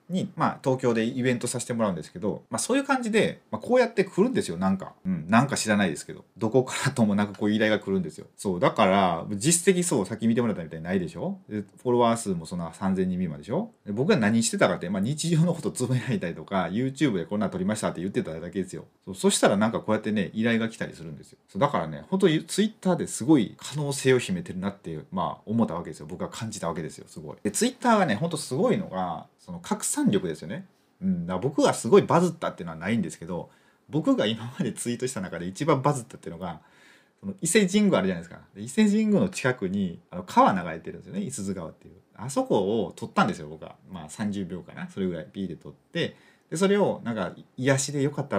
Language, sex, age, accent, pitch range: Japanese, male, 30-49, native, 120-195 Hz